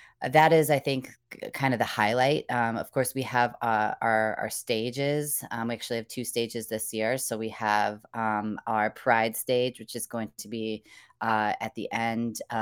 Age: 20-39